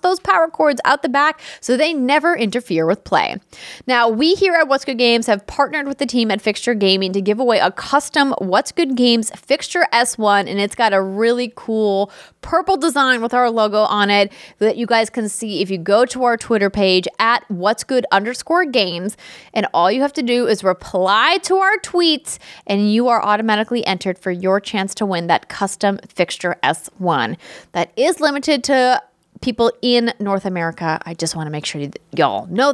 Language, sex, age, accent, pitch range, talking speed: English, female, 20-39, American, 200-275 Hz, 200 wpm